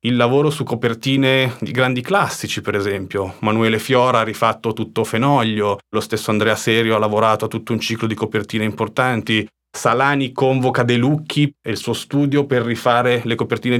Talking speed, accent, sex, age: 175 wpm, native, male, 30-49